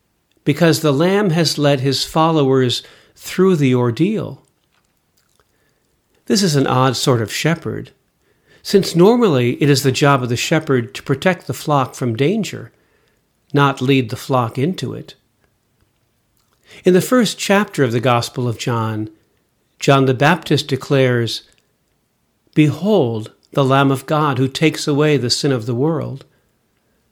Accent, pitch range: American, 120-155 Hz